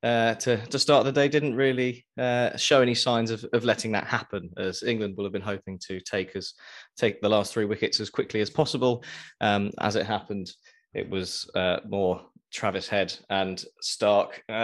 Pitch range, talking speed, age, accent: 95-120 Hz, 195 wpm, 20-39, British